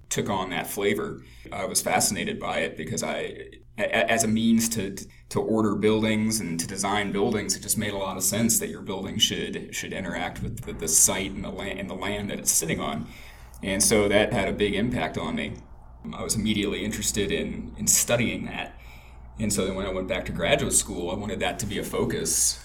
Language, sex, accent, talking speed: English, male, American, 220 wpm